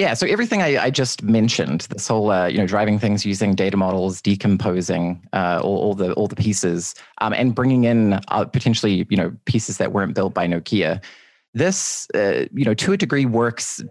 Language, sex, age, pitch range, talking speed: English, male, 20-39, 95-120 Hz, 195 wpm